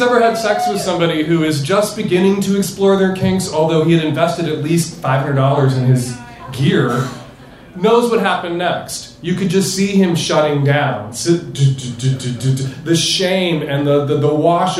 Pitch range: 135-185 Hz